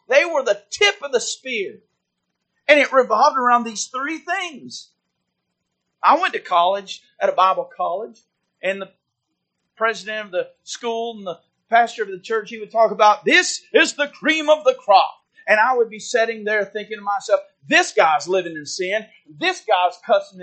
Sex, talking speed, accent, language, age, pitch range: male, 180 wpm, American, English, 40-59, 205-300 Hz